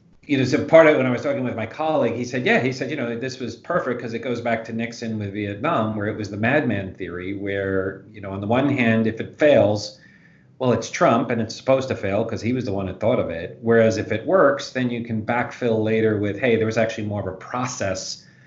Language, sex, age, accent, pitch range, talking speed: English, male, 40-59, American, 100-120 Hz, 265 wpm